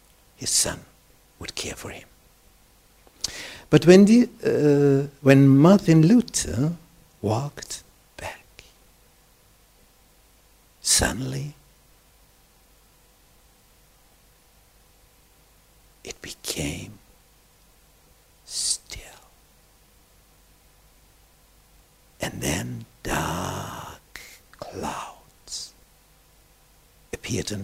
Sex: male